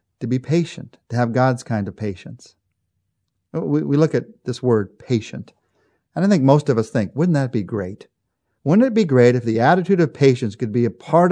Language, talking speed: English, 210 wpm